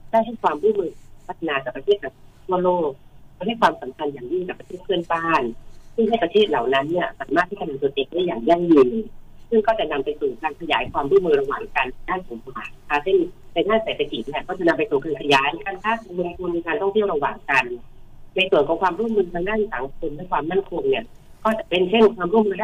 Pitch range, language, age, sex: 140-220 Hz, Thai, 30-49, female